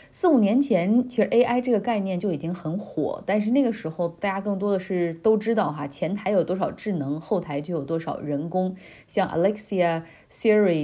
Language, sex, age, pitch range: Chinese, female, 20-39, 165-210 Hz